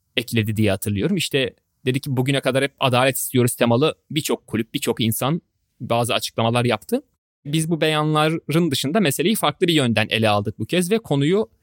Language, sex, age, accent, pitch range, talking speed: Turkish, male, 30-49, native, 120-150 Hz, 170 wpm